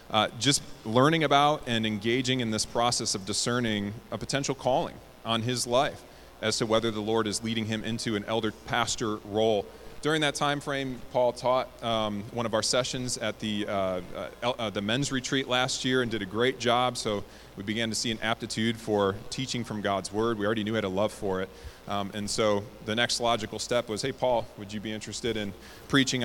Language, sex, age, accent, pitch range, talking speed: English, male, 30-49, American, 105-125 Hz, 215 wpm